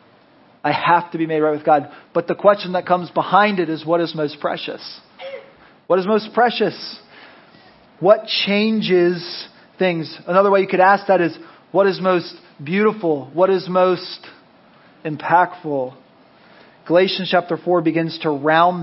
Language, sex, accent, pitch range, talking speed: English, male, American, 150-190 Hz, 155 wpm